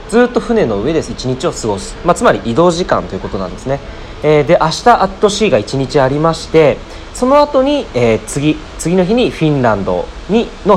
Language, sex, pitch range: Japanese, male, 95-165 Hz